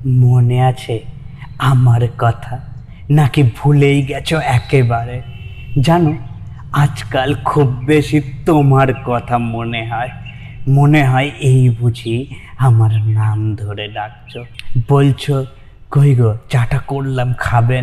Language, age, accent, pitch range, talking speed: Bengali, 20-39, native, 115-140 Hz, 100 wpm